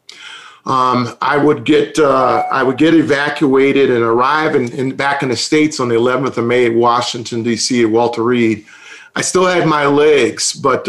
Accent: American